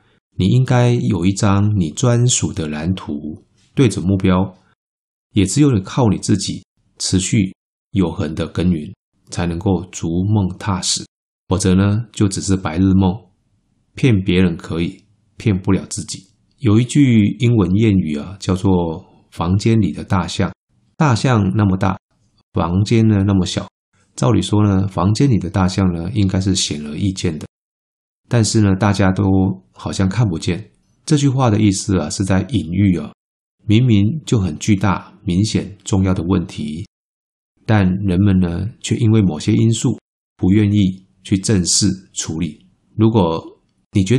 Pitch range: 95-105 Hz